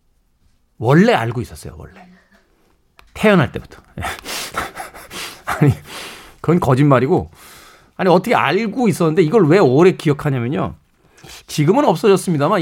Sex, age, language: male, 40-59, Korean